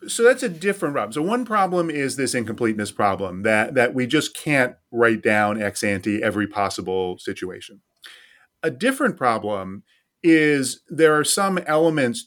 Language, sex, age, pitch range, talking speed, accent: English, male, 30-49, 110-160 Hz, 155 wpm, American